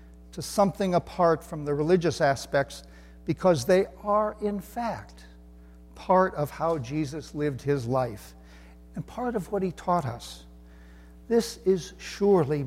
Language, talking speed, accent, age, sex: English, 135 wpm, American, 60-79, male